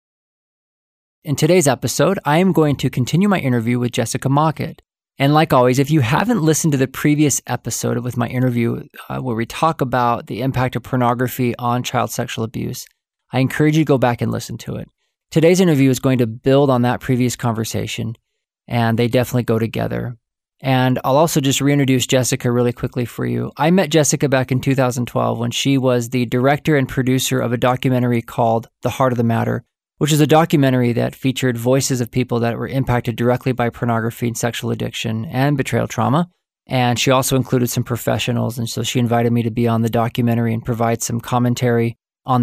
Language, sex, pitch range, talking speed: English, male, 120-135 Hz, 195 wpm